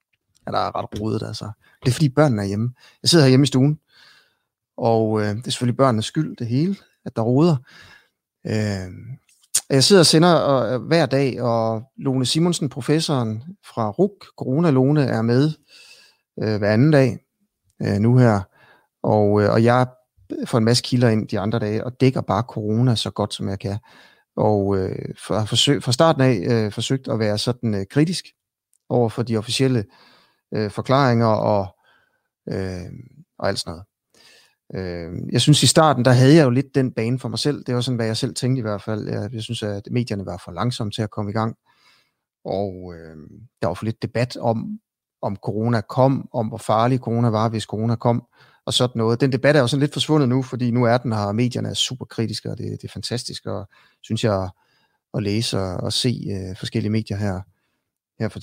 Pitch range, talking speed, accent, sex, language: 105-130 Hz, 200 wpm, native, male, Danish